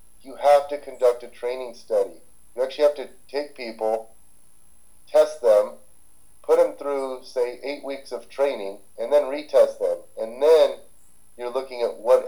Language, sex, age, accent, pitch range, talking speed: English, male, 30-49, American, 110-140 Hz, 160 wpm